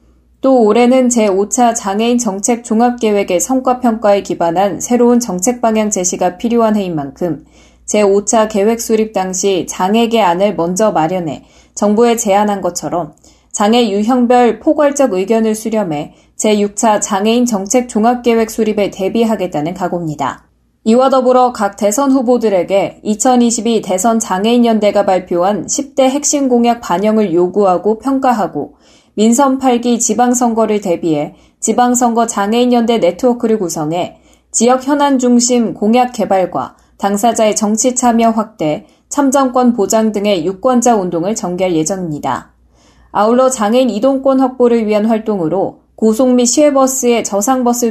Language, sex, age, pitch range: Korean, female, 20-39, 195-245 Hz